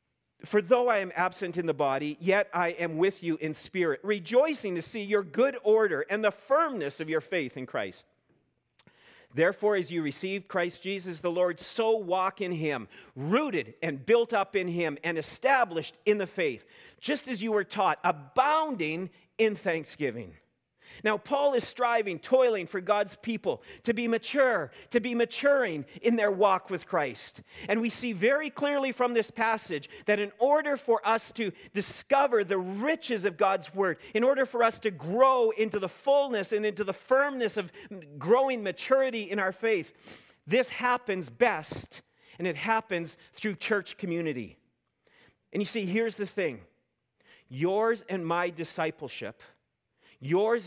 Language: English